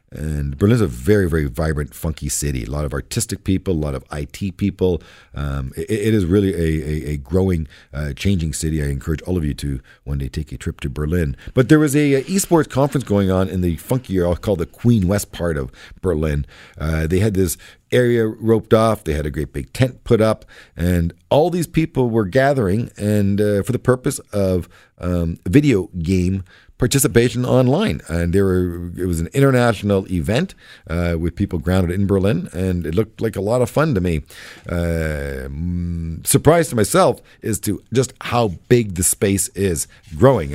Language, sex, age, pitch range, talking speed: English, male, 50-69, 80-120 Hz, 195 wpm